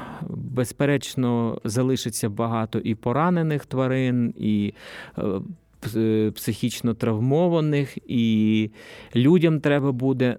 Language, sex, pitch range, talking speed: Ukrainian, male, 105-125 Hz, 75 wpm